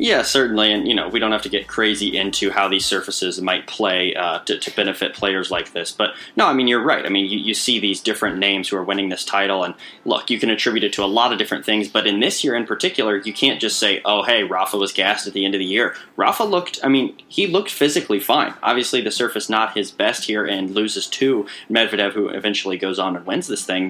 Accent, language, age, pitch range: American, English, 20-39, 100-140 Hz